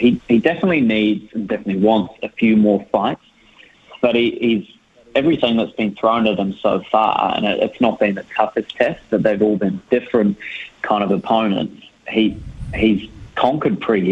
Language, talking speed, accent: English, 180 wpm, Australian